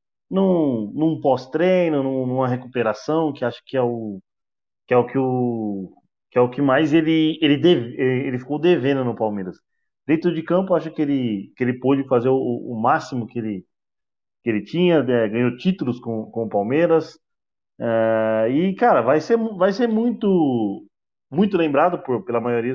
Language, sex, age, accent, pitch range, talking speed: Portuguese, male, 20-39, Brazilian, 120-165 Hz, 175 wpm